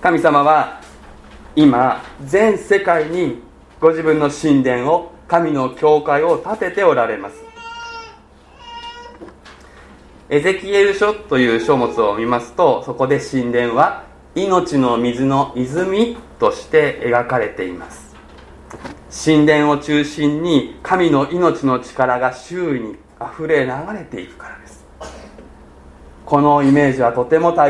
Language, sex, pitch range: Japanese, male, 120-180 Hz